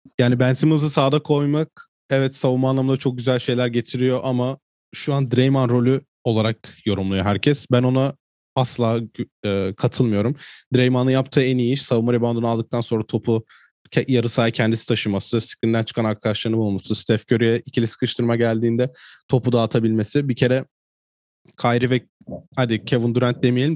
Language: Turkish